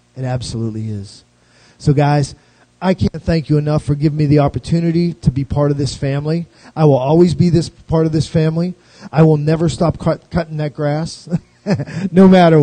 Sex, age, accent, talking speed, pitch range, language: male, 40-59, American, 185 wpm, 130-150 Hz, English